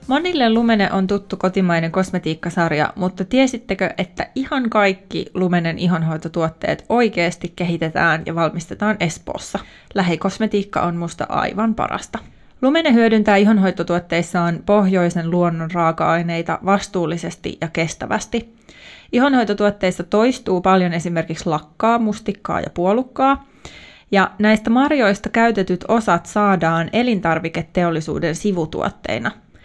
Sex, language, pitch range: female, Finnish, 170-225 Hz